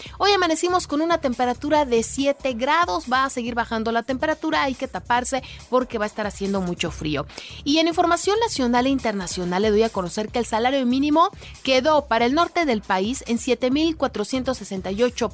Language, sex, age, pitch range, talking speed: Spanish, female, 40-59, 220-285 Hz, 180 wpm